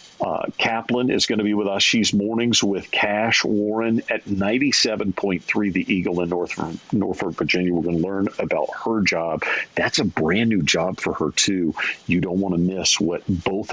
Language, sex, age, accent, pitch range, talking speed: English, male, 50-69, American, 85-105 Hz, 190 wpm